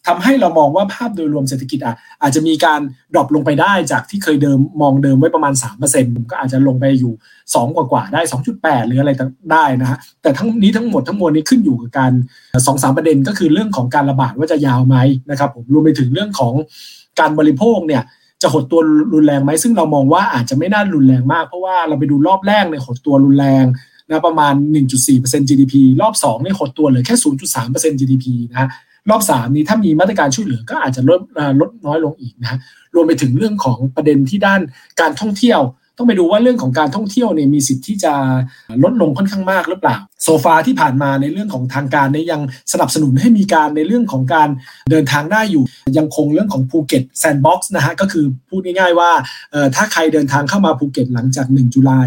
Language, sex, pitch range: Thai, male, 130-170 Hz